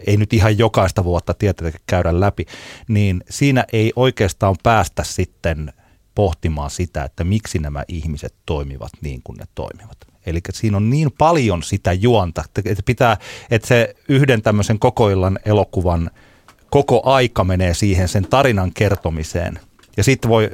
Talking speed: 150 wpm